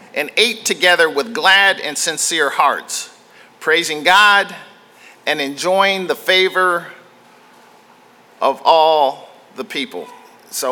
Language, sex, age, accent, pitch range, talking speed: English, male, 50-69, American, 180-245 Hz, 105 wpm